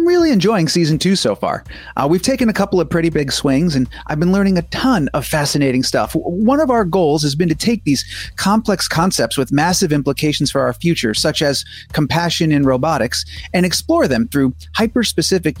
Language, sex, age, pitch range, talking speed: English, male, 30-49, 130-175 Hz, 195 wpm